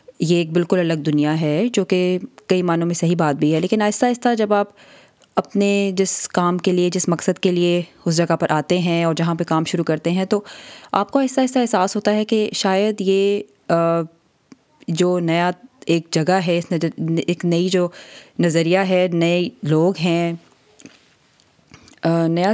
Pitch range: 170-210 Hz